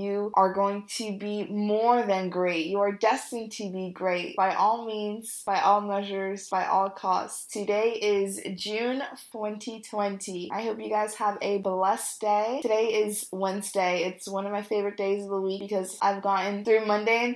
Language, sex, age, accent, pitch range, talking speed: English, female, 20-39, American, 195-230 Hz, 185 wpm